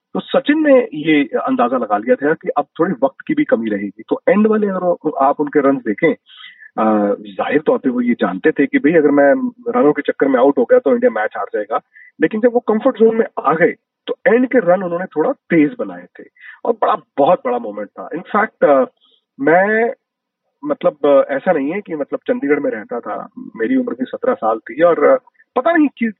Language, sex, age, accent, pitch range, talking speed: Hindi, male, 40-59, native, 155-250 Hz, 215 wpm